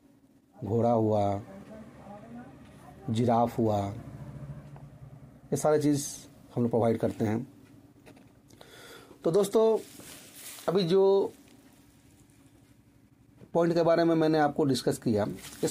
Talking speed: 95 wpm